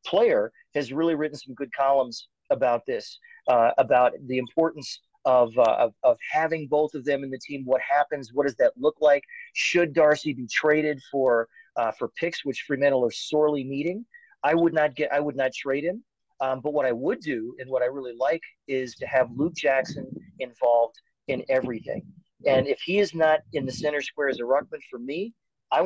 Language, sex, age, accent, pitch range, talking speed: English, male, 40-59, American, 130-160 Hz, 200 wpm